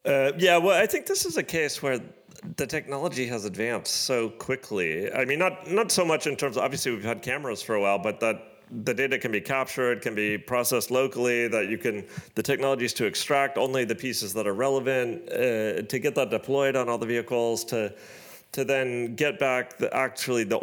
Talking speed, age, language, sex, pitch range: 210 wpm, 40-59, English, male, 105-135 Hz